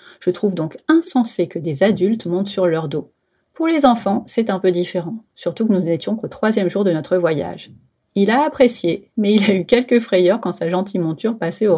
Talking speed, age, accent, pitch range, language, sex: 220 wpm, 30-49, French, 175-240 Hz, French, female